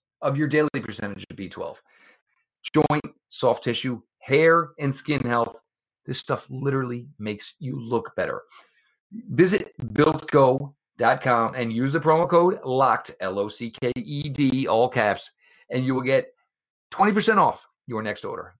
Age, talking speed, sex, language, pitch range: 40-59, 130 wpm, male, English, 115-155 Hz